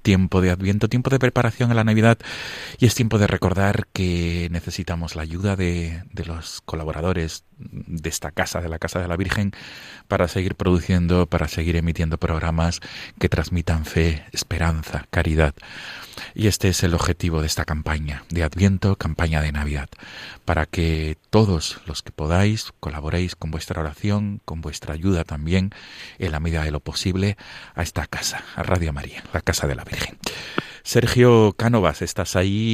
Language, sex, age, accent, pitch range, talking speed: Spanish, male, 40-59, Spanish, 85-105 Hz, 165 wpm